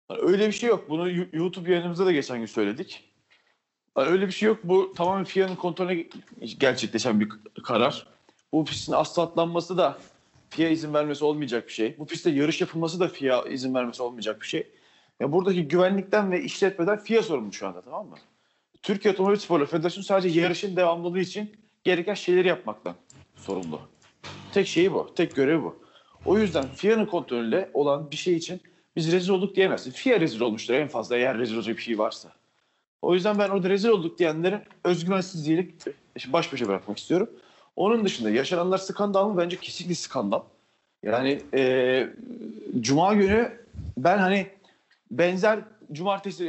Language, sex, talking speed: Turkish, male, 160 wpm